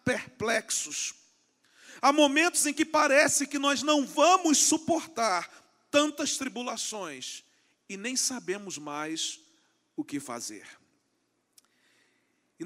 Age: 40-59